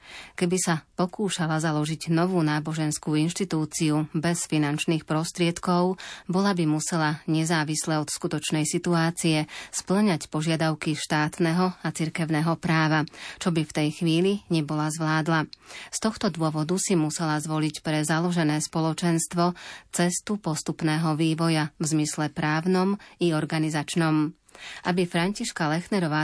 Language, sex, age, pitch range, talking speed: Slovak, female, 30-49, 155-170 Hz, 115 wpm